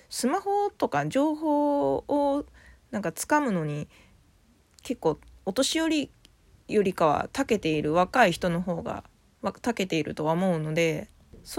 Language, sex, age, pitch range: Japanese, female, 20-39, 175-265 Hz